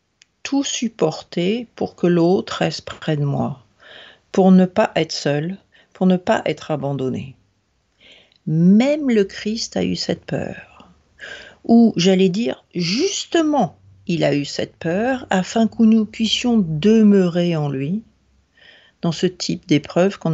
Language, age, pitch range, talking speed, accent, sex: French, 50-69, 120-185 Hz, 140 wpm, French, female